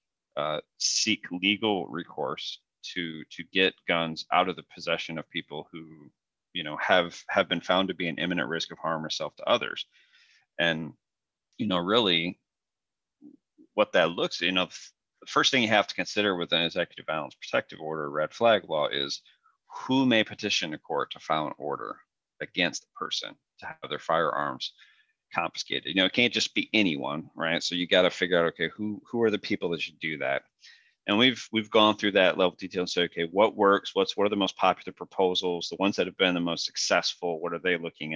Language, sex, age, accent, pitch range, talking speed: English, male, 40-59, American, 85-105 Hz, 205 wpm